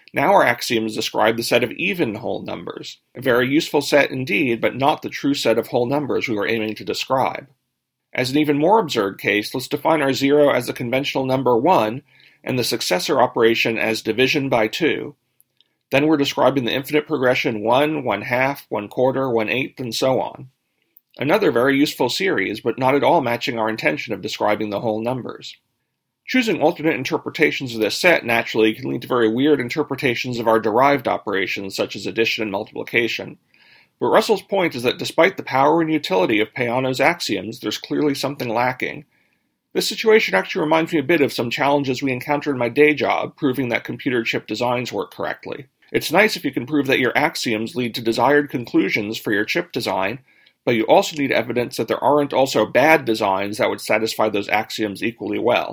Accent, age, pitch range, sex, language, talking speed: American, 40-59, 115-145 Hz, male, English, 195 wpm